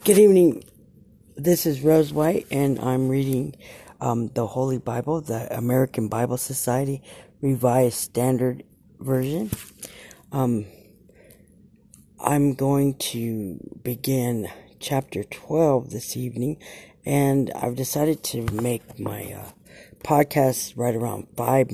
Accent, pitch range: American, 105-135 Hz